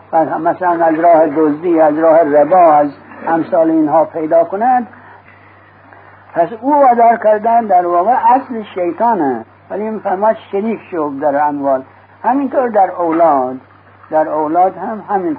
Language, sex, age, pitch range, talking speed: English, male, 60-79, 150-220 Hz, 125 wpm